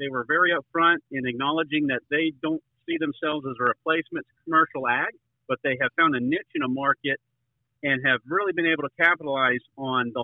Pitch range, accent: 125-155 Hz, American